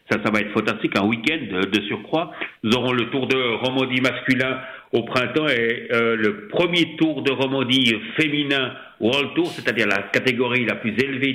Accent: French